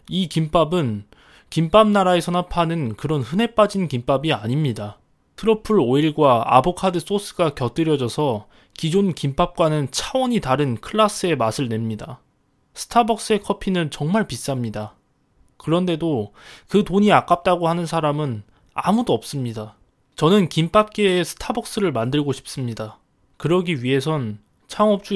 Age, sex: 20-39, male